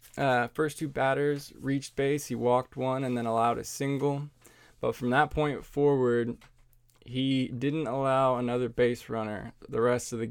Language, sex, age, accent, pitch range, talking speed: English, male, 20-39, American, 115-135 Hz, 170 wpm